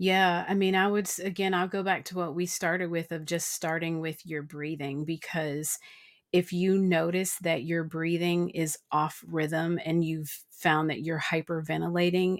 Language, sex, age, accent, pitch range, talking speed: English, female, 40-59, American, 160-185 Hz, 175 wpm